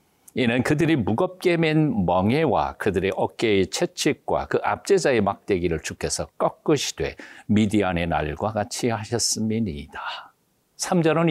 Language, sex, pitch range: Korean, male, 105-165 Hz